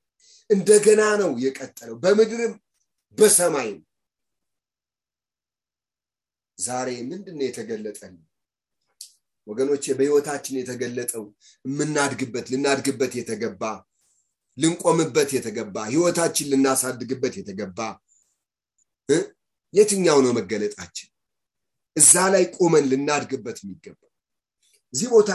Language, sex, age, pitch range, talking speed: English, male, 30-49, 130-175 Hz, 60 wpm